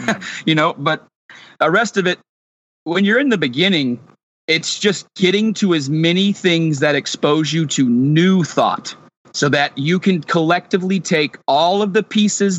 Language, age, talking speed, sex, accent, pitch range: English, 40-59, 165 wpm, male, American, 145-185 Hz